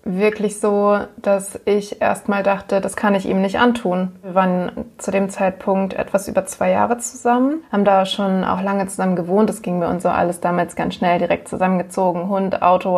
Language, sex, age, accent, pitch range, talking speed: German, female, 20-39, German, 190-220 Hz, 200 wpm